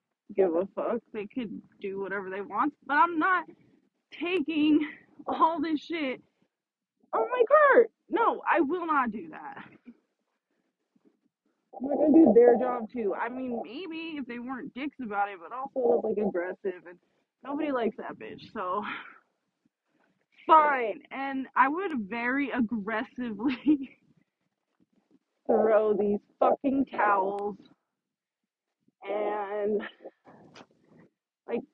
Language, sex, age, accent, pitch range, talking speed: English, female, 20-39, American, 215-305 Hz, 115 wpm